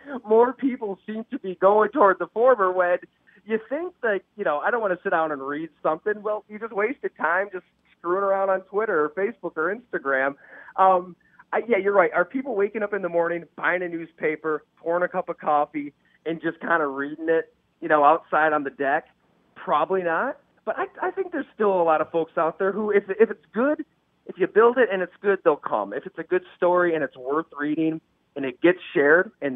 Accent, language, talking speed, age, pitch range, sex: American, English, 225 wpm, 30-49, 150-195 Hz, male